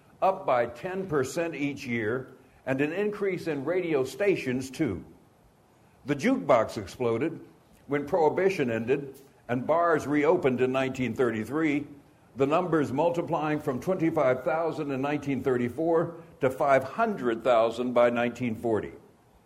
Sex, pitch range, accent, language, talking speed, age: male, 130-165 Hz, American, English, 105 wpm, 60-79